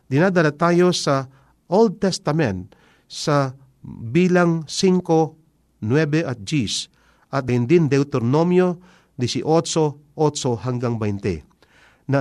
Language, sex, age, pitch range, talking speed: Filipino, male, 50-69, 115-165 Hz, 90 wpm